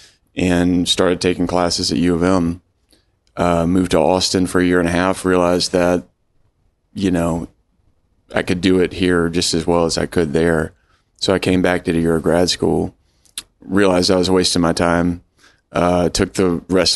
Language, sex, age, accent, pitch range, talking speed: English, male, 30-49, American, 85-90 Hz, 190 wpm